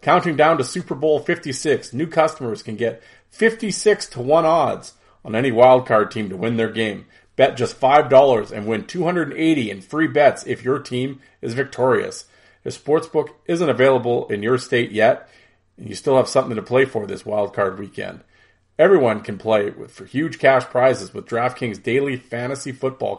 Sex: male